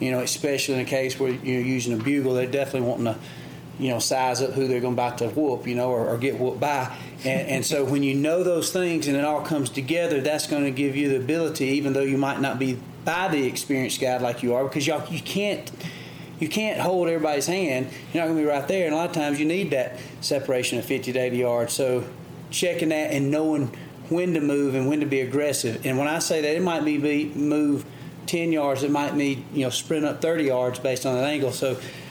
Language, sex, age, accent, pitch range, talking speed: English, male, 40-59, American, 130-150 Hz, 245 wpm